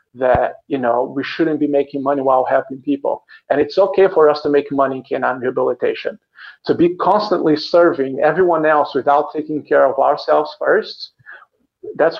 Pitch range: 140-185 Hz